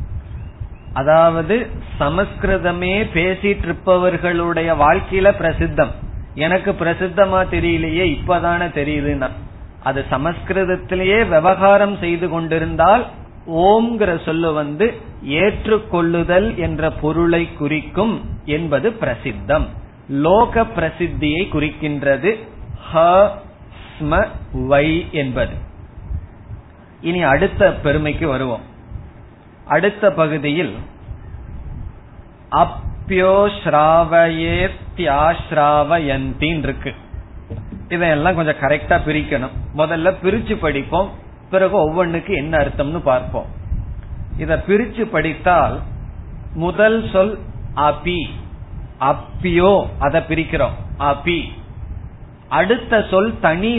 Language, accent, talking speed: Tamil, native, 55 wpm